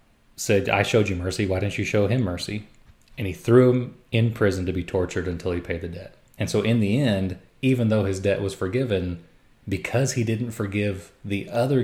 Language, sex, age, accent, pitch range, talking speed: English, male, 30-49, American, 95-115 Hz, 215 wpm